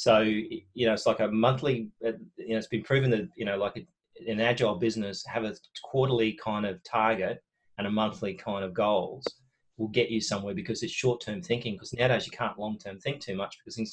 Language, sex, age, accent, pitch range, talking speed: English, male, 30-49, Australian, 105-125 Hz, 210 wpm